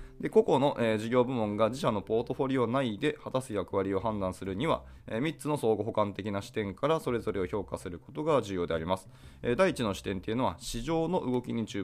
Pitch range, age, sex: 95-140 Hz, 20-39, male